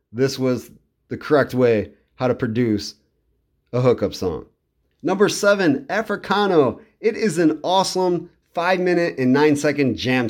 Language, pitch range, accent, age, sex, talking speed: English, 130-180 Hz, American, 30-49, male, 140 wpm